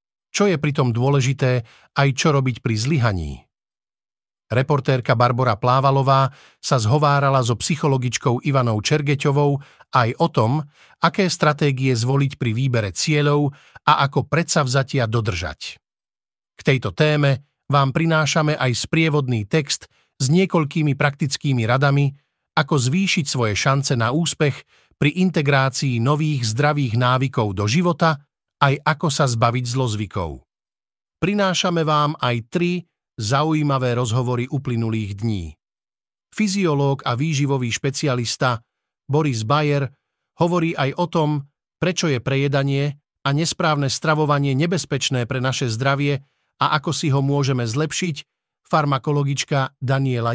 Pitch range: 130-155 Hz